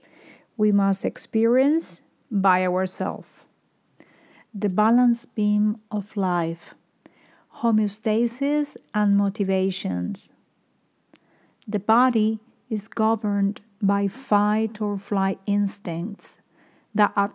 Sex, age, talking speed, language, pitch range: female, 50-69, 75 wpm, English, 190-220 Hz